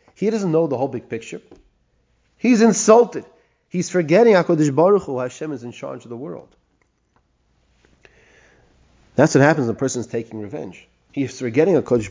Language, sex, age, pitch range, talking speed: English, male, 30-49, 135-180 Hz, 165 wpm